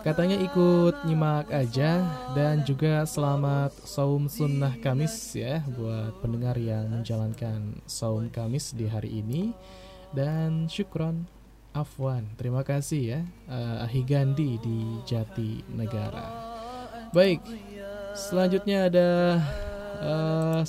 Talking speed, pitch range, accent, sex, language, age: 100 wpm, 125-170 Hz, native, male, Indonesian, 20-39